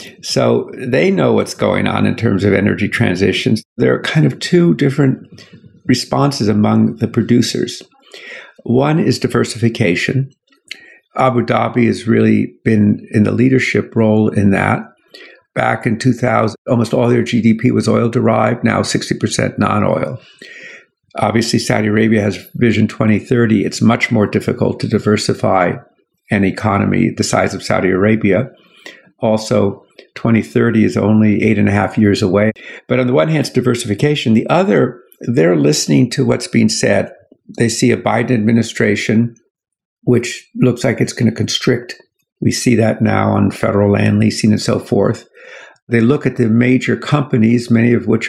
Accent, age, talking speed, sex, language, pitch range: American, 50-69, 155 wpm, male, English, 105-125 Hz